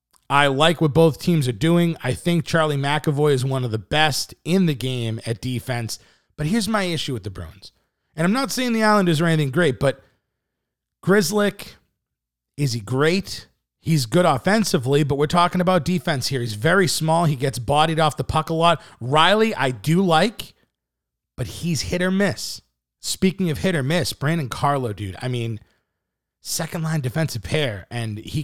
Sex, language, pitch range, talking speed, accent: male, English, 120-165 Hz, 180 wpm, American